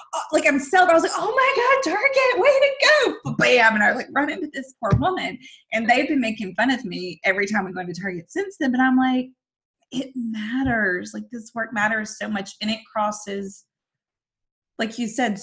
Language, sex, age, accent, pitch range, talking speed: English, female, 20-39, American, 190-250 Hz, 210 wpm